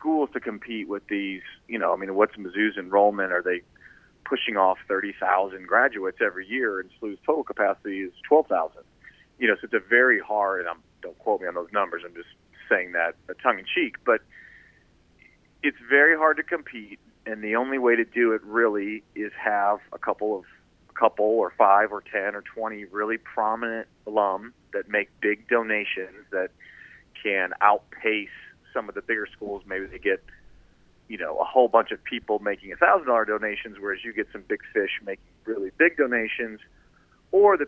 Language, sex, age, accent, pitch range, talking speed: English, male, 40-59, American, 100-120 Hz, 180 wpm